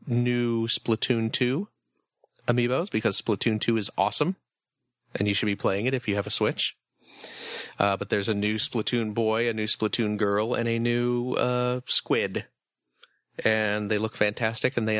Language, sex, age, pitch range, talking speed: English, male, 30-49, 105-125 Hz, 170 wpm